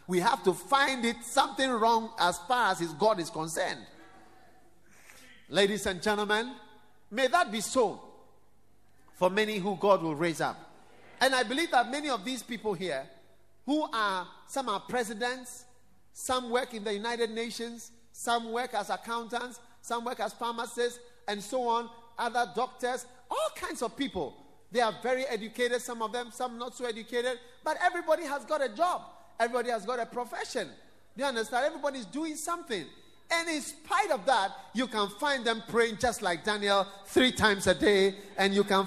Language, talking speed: English, 170 wpm